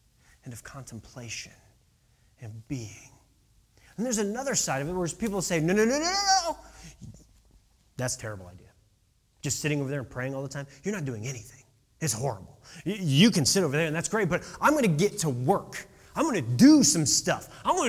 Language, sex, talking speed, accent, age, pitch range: English, male, 210 wpm, American, 30-49, 150-250 Hz